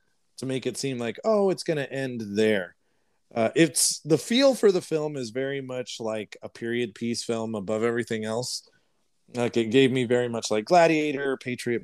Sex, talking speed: male, 190 wpm